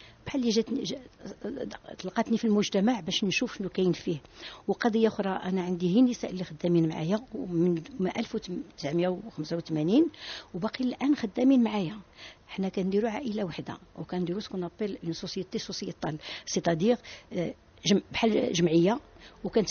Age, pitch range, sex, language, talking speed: 60-79, 175-225 Hz, female, English, 95 wpm